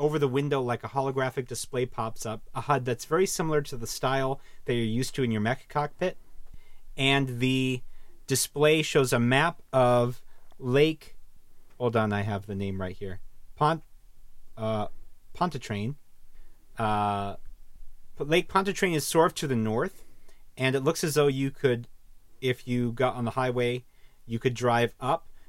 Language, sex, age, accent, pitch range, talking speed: English, male, 30-49, American, 115-140 Hz, 165 wpm